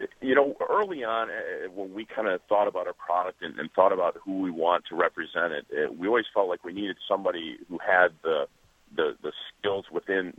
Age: 50-69